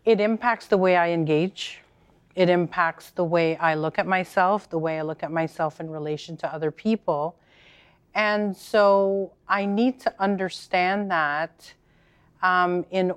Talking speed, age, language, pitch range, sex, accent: 155 wpm, 40-59, English, 160-185 Hz, female, American